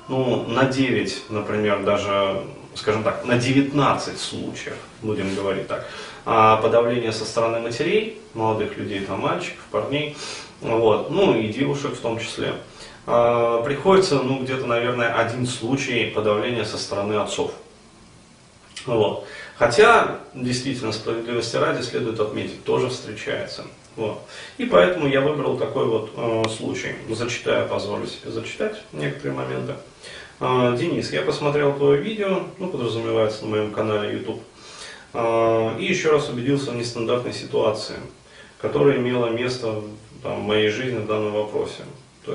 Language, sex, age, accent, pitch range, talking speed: Russian, male, 30-49, native, 110-135 Hz, 130 wpm